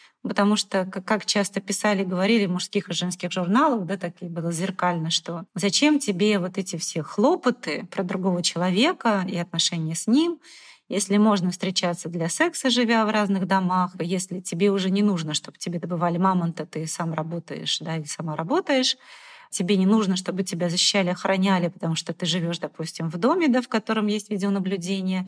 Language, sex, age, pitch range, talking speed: Russian, female, 30-49, 180-210 Hz, 180 wpm